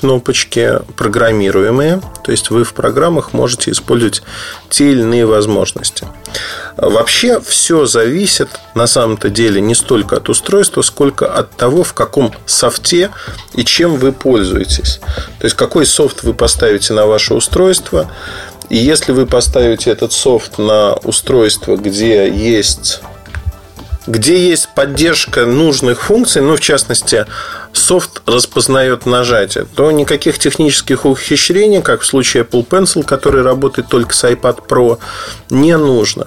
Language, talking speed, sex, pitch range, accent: Russian, 130 wpm, male, 115-150 Hz, native